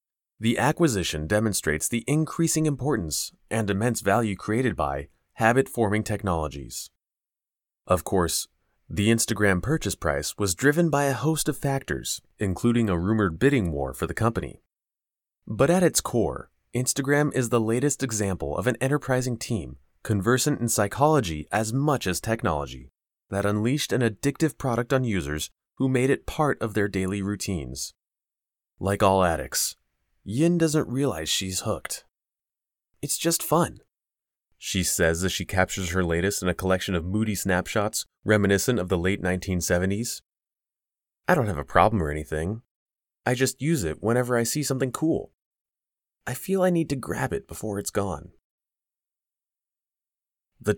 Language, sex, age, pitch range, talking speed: English, male, 30-49, 90-130 Hz, 150 wpm